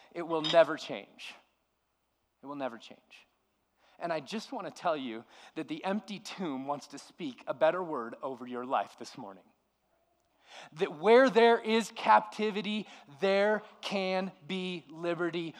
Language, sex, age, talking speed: English, male, 30-49, 150 wpm